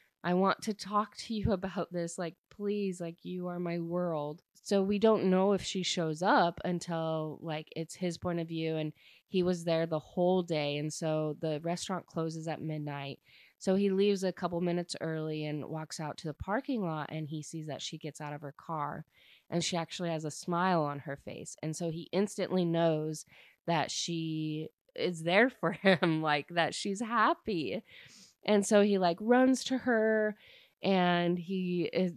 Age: 20-39